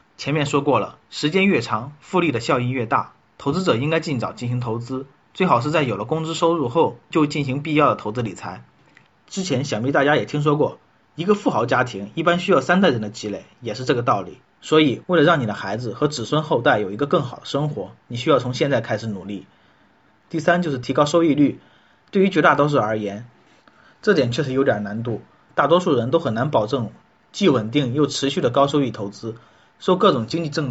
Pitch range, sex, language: 120-160 Hz, male, Chinese